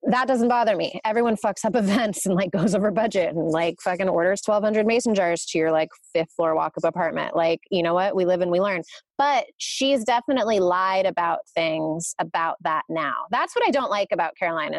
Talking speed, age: 210 wpm, 20-39